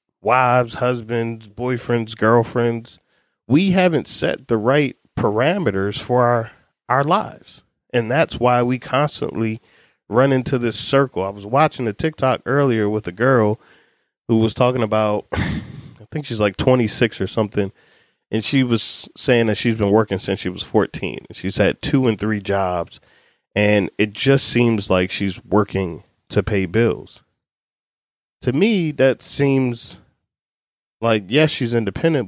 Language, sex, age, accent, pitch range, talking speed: English, male, 30-49, American, 105-130 Hz, 145 wpm